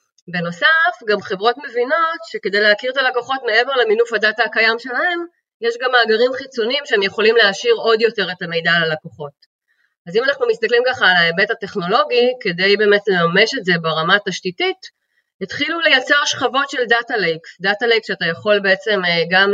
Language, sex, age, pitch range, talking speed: Hebrew, female, 30-49, 185-260 Hz, 155 wpm